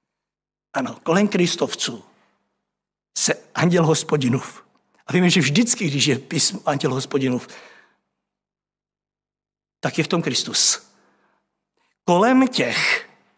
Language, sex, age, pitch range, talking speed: Czech, male, 60-79, 140-170 Hz, 100 wpm